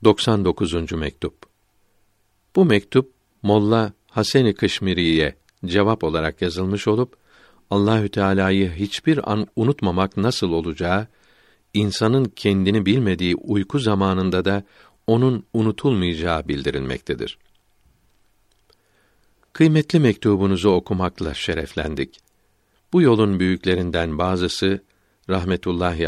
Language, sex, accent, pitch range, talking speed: Turkish, male, native, 90-110 Hz, 85 wpm